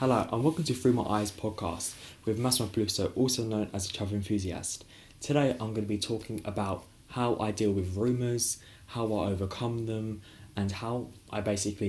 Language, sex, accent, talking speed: English, male, British, 185 wpm